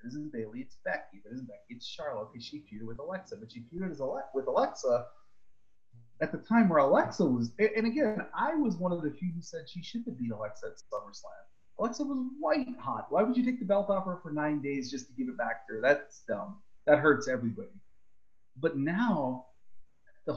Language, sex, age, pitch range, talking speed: English, male, 30-49, 115-190 Hz, 220 wpm